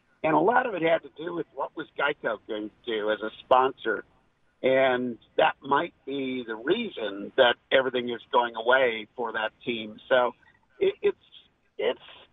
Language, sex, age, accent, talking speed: English, male, 50-69, American, 175 wpm